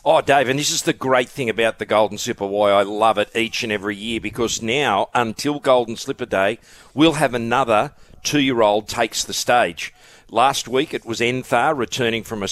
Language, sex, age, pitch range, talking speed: English, male, 50-69, 110-140 Hz, 195 wpm